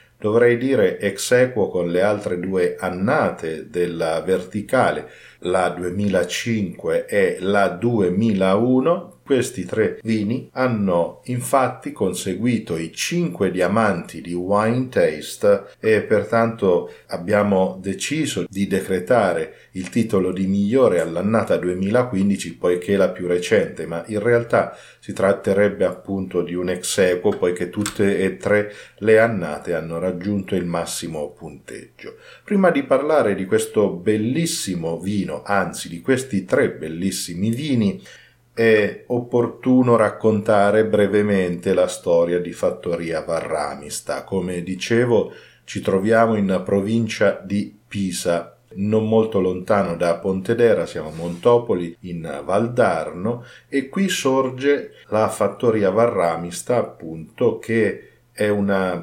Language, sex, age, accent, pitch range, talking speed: Italian, male, 40-59, native, 90-115 Hz, 120 wpm